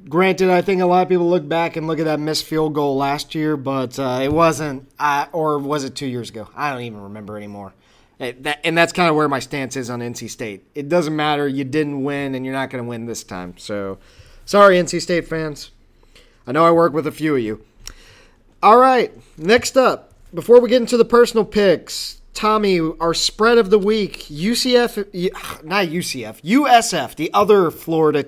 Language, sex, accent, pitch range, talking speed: English, male, American, 140-205 Hz, 205 wpm